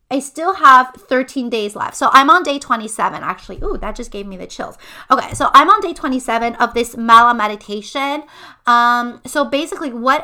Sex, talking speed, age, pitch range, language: female, 195 wpm, 30-49, 220-270 Hz, English